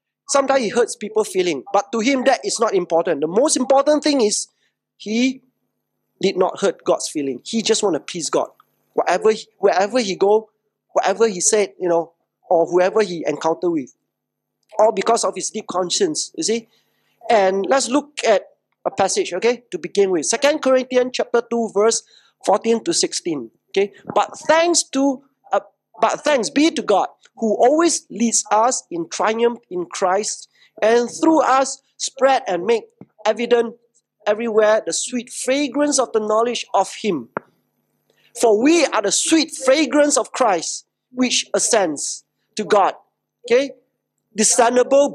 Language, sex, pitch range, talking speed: English, male, 205-275 Hz, 155 wpm